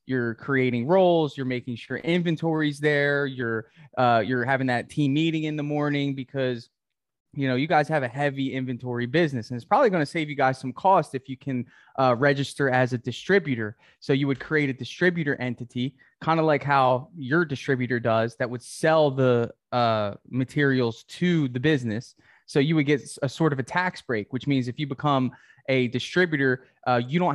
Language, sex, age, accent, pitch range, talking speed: English, male, 20-39, American, 125-150 Hz, 195 wpm